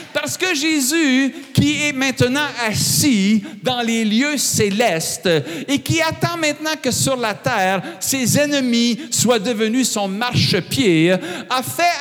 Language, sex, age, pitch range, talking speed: French, male, 50-69, 200-265 Hz, 135 wpm